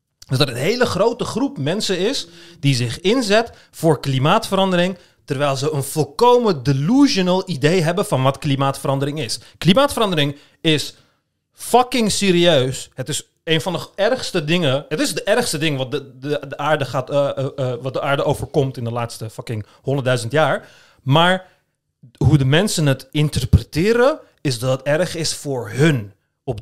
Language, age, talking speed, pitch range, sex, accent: Dutch, 30-49, 165 wpm, 135-205 Hz, male, Dutch